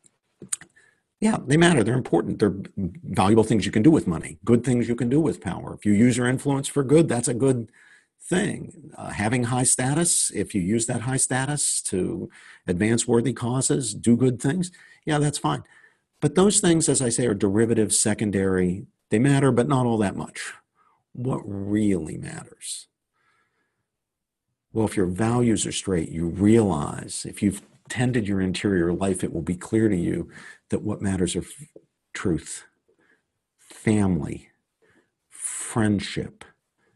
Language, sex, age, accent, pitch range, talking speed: English, male, 50-69, American, 100-130 Hz, 155 wpm